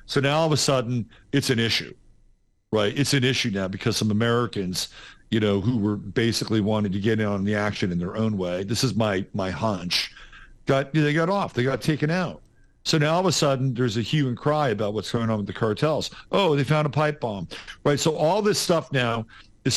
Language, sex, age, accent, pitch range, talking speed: English, male, 50-69, American, 110-140 Hz, 235 wpm